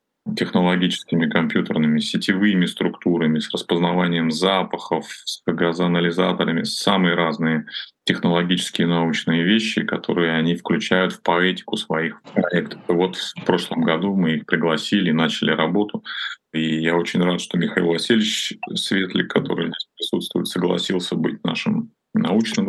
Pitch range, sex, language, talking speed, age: 85-115 Hz, male, Russian, 120 wpm, 30-49